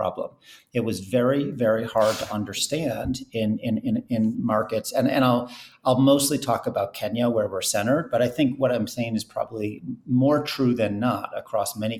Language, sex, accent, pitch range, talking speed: English, male, American, 105-125 Hz, 190 wpm